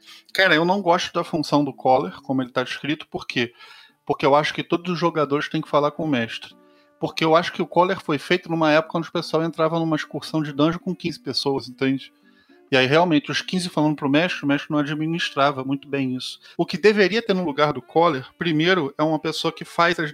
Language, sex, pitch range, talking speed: Portuguese, male, 145-180 Hz, 240 wpm